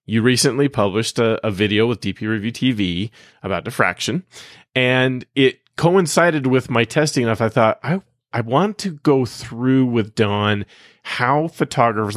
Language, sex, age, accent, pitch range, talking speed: English, male, 30-49, American, 105-130 Hz, 150 wpm